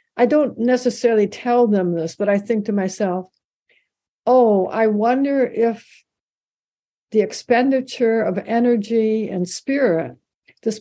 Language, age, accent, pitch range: English, 60-79, American, 200-240 Hz